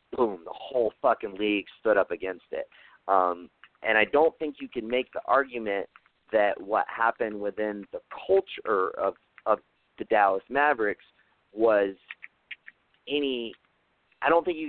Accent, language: American, English